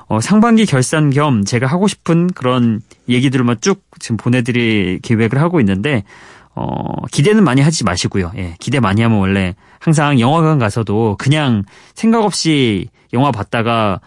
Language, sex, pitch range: Korean, male, 110-165 Hz